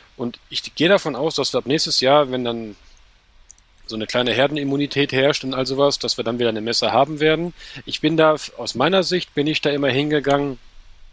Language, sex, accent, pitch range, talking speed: German, male, German, 120-140 Hz, 210 wpm